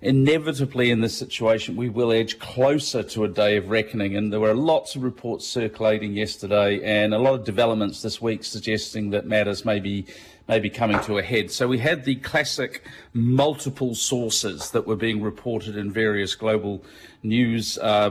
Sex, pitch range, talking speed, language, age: male, 105-125 Hz, 180 wpm, English, 40-59